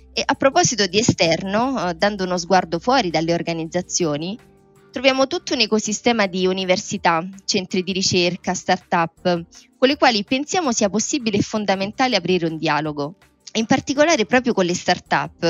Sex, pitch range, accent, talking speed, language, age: female, 175-235 Hz, native, 150 wpm, Italian, 20-39